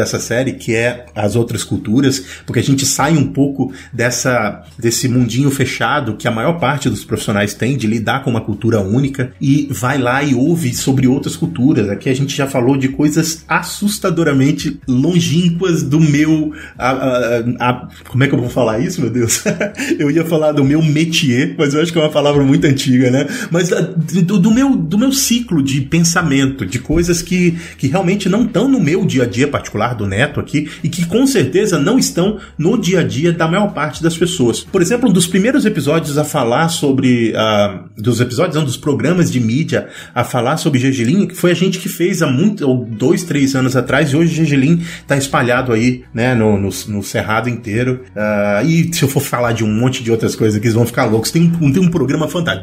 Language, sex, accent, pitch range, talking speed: Portuguese, male, Brazilian, 120-165 Hz, 200 wpm